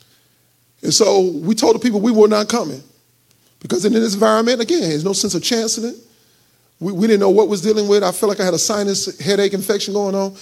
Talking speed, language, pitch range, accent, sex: 235 wpm, English, 215-300 Hz, American, male